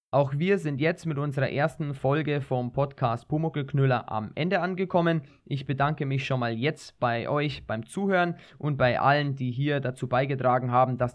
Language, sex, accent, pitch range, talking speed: German, male, German, 130-160 Hz, 180 wpm